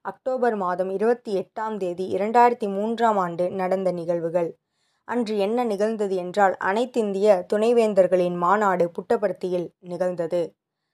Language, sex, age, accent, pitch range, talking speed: Tamil, female, 20-39, native, 190-235 Hz, 105 wpm